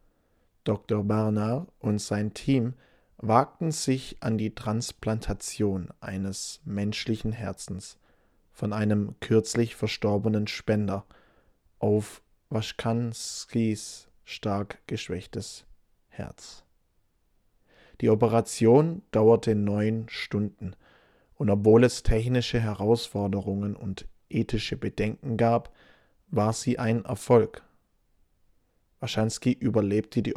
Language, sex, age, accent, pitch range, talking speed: English, male, 20-39, German, 105-115 Hz, 85 wpm